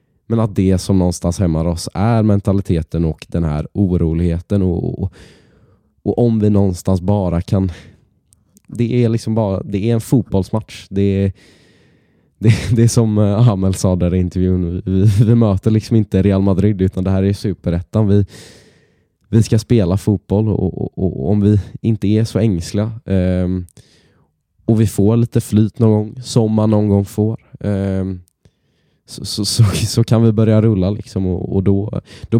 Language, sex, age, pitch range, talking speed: Swedish, male, 20-39, 95-115 Hz, 170 wpm